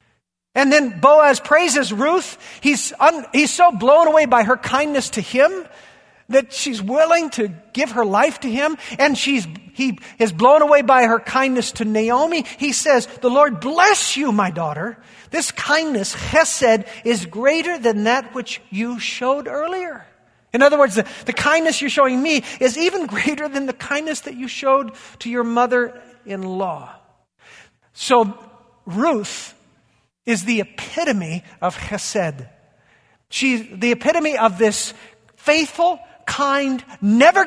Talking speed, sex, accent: 145 wpm, male, American